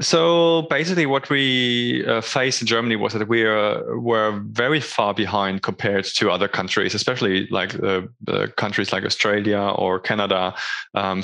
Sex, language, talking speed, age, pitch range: male, English, 155 wpm, 20-39, 100-125 Hz